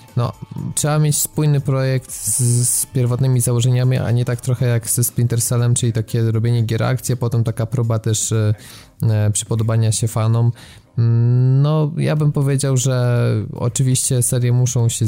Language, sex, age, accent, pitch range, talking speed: Polish, male, 20-39, native, 110-130 Hz, 165 wpm